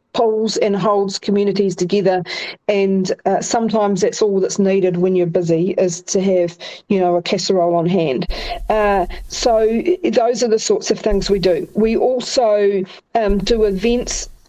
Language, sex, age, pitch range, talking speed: English, female, 40-59, 190-220 Hz, 160 wpm